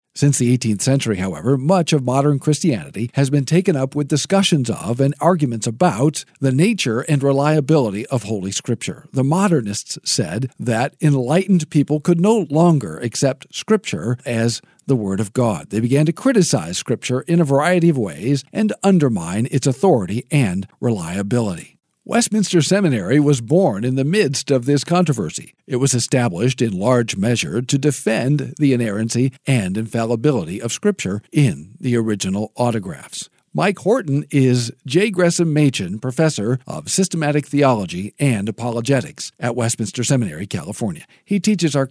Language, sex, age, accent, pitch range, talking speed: English, male, 50-69, American, 120-165 Hz, 150 wpm